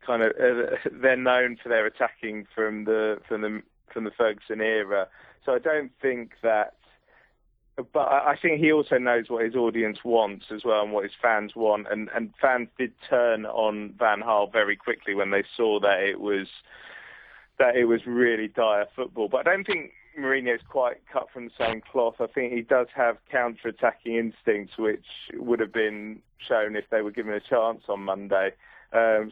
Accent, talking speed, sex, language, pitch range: British, 190 wpm, male, English, 105-120 Hz